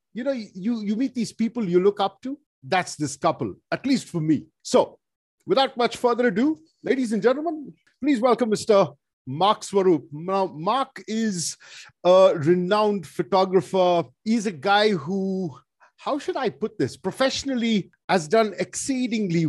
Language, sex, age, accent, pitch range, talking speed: English, male, 50-69, Indian, 150-210 Hz, 150 wpm